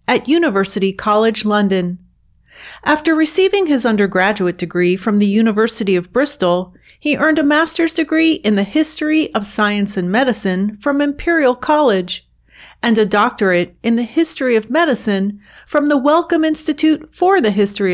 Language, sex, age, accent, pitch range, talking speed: English, female, 40-59, American, 195-285 Hz, 145 wpm